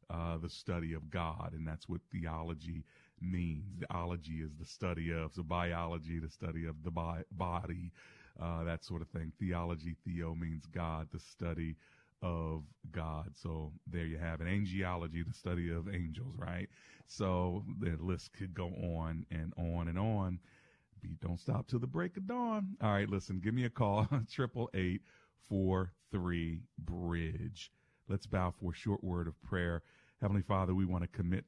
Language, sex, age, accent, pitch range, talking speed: English, male, 40-59, American, 85-100 Hz, 170 wpm